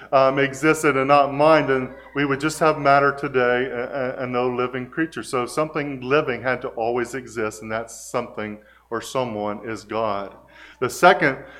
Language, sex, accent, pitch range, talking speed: English, male, American, 115-135 Hz, 170 wpm